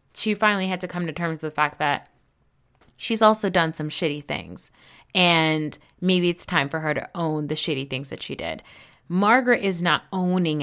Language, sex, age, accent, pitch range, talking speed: English, female, 20-39, American, 160-225 Hz, 200 wpm